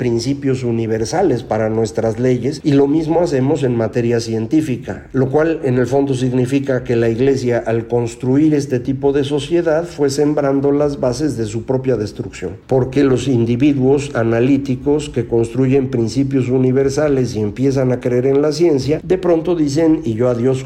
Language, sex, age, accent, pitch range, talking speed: Spanish, male, 50-69, Mexican, 120-150 Hz, 165 wpm